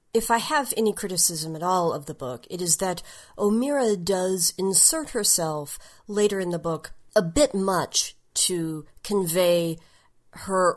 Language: English